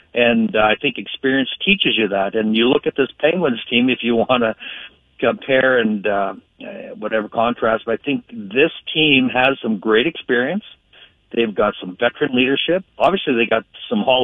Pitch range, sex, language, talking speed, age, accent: 110-130 Hz, male, English, 180 wpm, 60-79, American